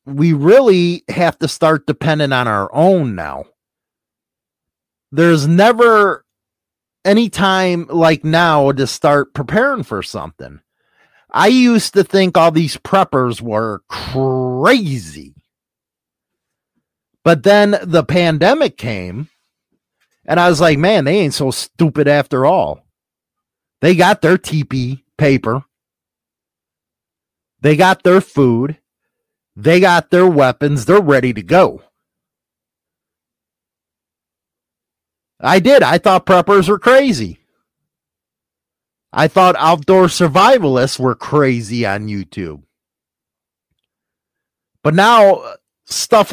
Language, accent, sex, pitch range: English, American, male, 125-190 Hz